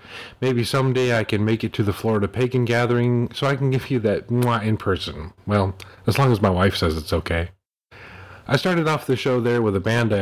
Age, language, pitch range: 40-59, English, 95-120 Hz